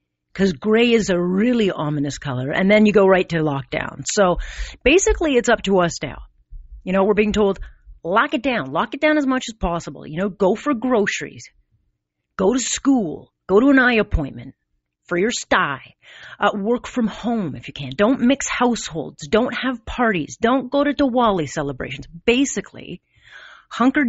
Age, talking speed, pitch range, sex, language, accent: 40-59, 180 wpm, 165-250 Hz, female, English, American